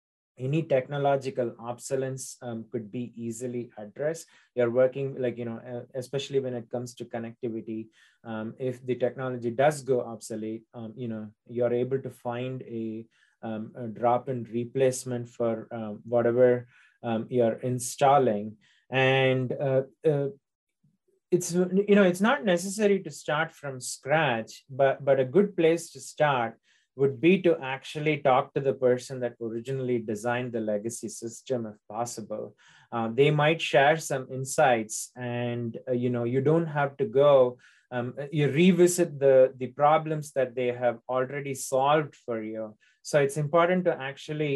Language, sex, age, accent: English, male, 30-49, Indian